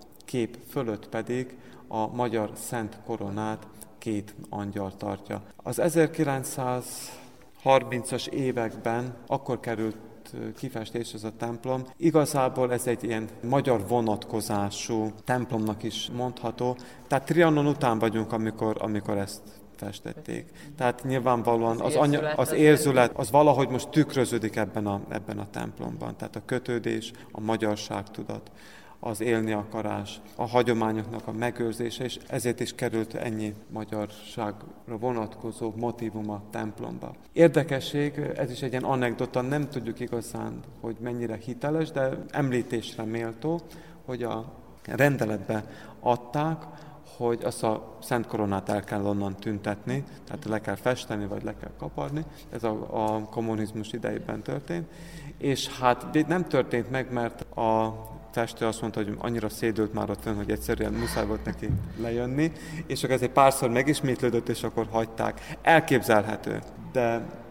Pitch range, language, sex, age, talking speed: 110-130 Hz, Hungarian, male, 30-49, 135 wpm